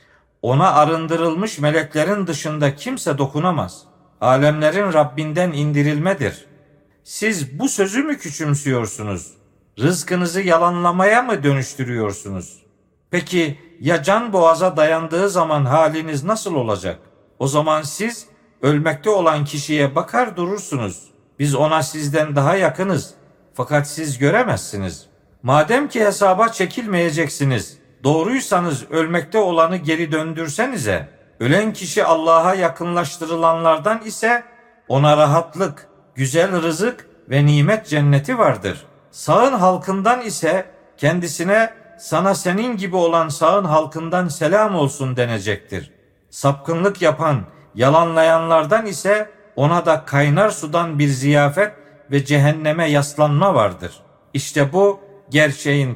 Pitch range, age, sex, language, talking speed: 145-185 Hz, 50-69, male, Turkish, 100 wpm